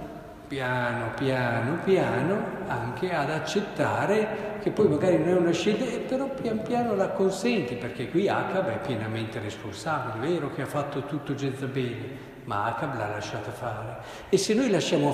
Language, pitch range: Italian, 125-165 Hz